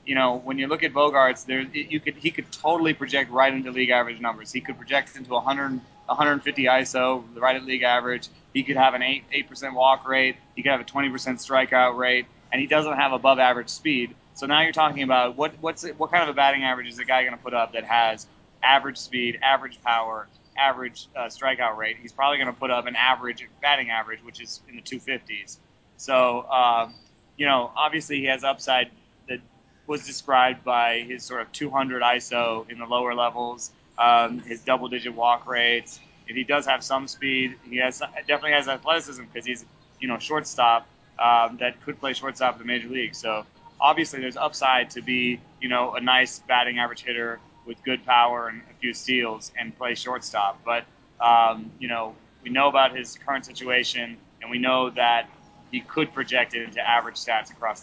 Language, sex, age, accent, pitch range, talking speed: English, male, 20-39, American, 120-135 Hz, 200 wpm